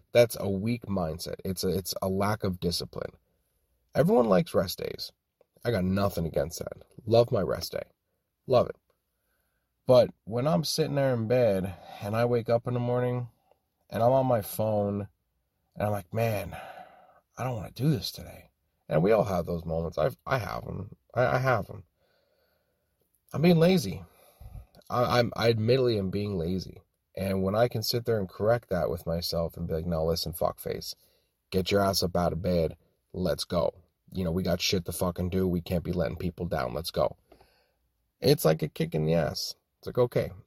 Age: 30-49